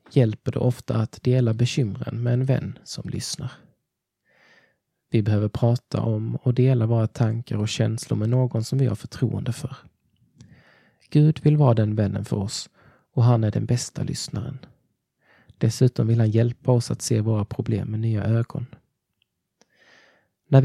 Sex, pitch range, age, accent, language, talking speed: male, 110-130 Hz, 20-39, native, Swedish, 155 wpm